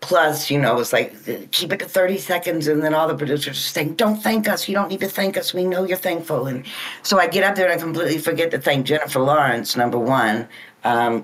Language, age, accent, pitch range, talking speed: English, 60-79, American, 135-195 Hz, 250 wpm